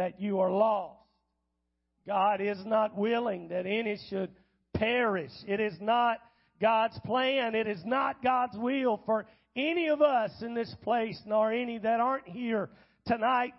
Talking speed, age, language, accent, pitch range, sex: 155 wpm, 40-59, English, American, 215-300 Hz, male